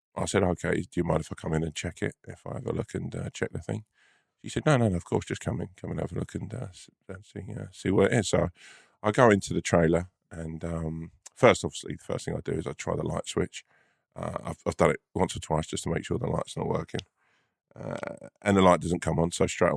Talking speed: 280 wpm